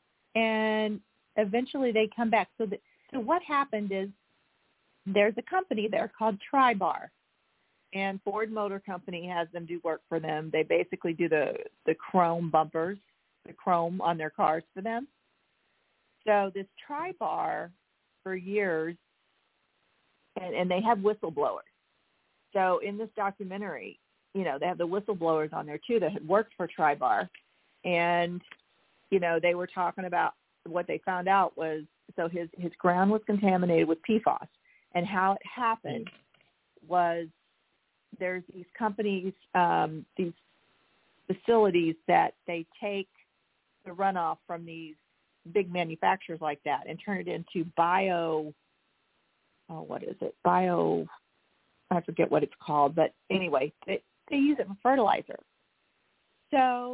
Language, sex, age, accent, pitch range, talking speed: English, female, 40-59, American, 170-220 Hz, 140 wpm